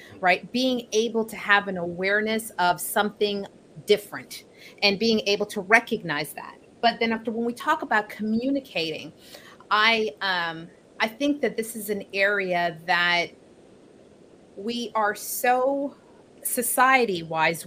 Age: 30-49